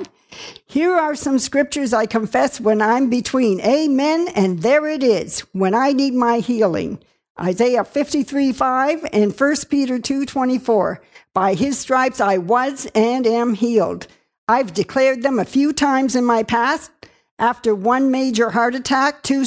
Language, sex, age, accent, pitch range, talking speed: English, female, 60-79, American, 230-305 Hz, 150 wpm